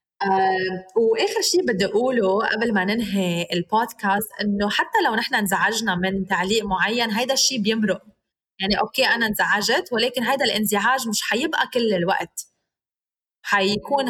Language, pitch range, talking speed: Arabic, 200-265 Hz, 135 wpm